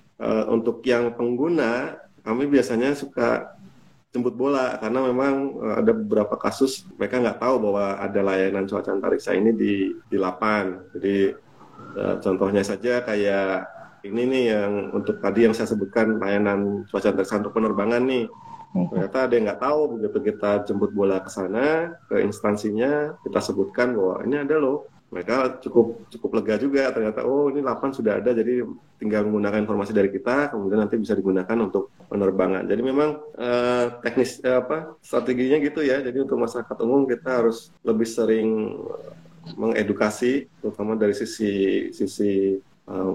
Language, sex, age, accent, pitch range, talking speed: Indonesian, male, 30-49, native, 100-130 Hz, 150 wpm